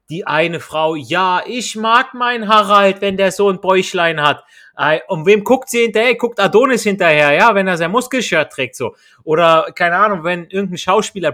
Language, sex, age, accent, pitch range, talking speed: German, male, 30-49, German, 155-210 Hz, 185 wpm